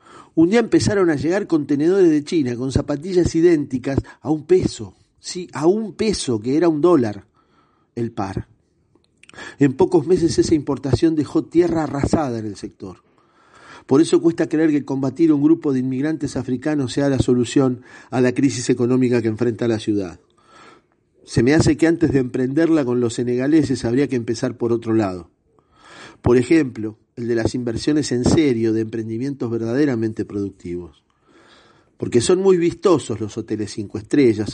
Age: 50-69